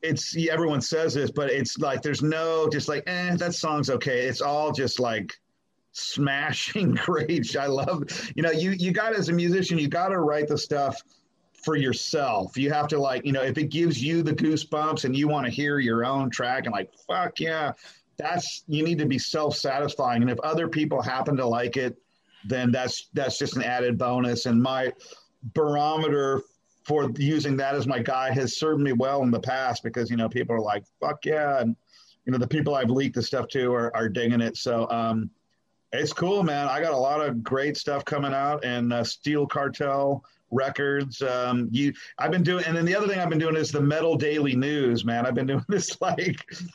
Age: 40-59